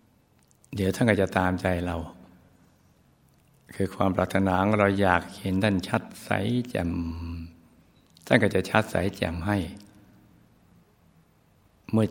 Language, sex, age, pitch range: Thai, male, 60-79, 90-100 Hz